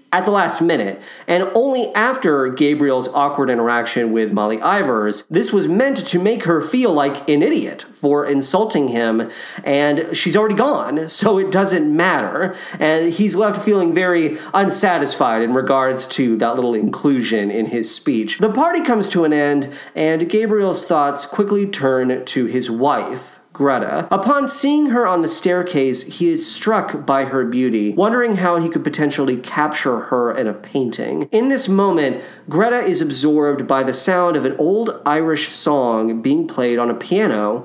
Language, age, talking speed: English, 40-59, 165 wpm